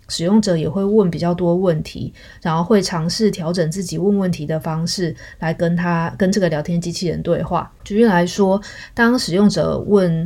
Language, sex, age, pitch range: Chinese, female, 20-39, 165-195 Hz